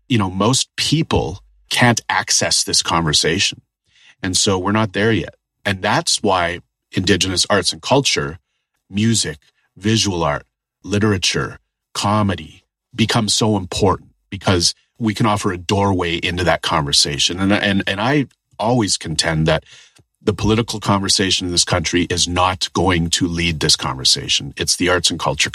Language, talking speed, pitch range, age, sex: English, 150 wpm, 85-105 Hz, 40-59, male